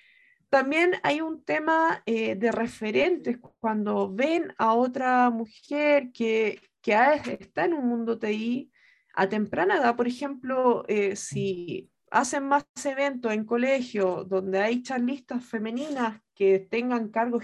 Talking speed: 130 wpm